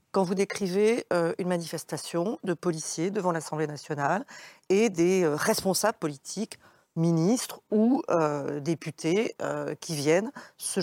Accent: French